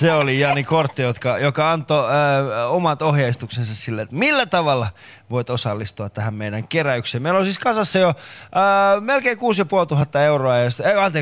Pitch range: 135-190 Hz